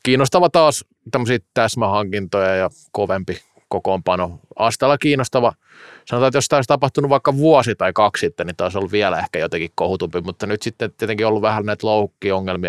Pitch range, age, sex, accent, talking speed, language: 95-120 Hz, 30-49, male, native, 170 wpm, Finnish